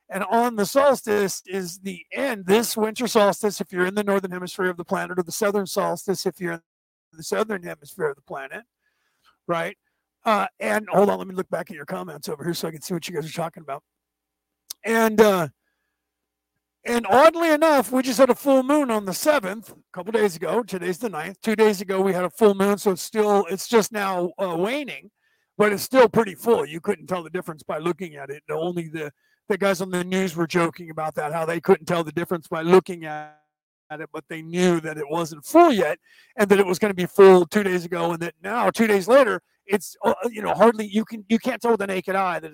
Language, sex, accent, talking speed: English, male, American, 235 wpm